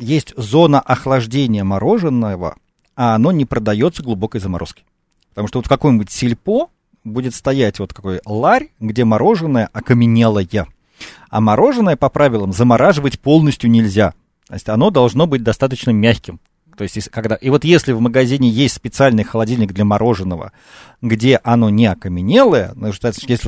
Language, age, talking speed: Russian, 40-59, 135 wpm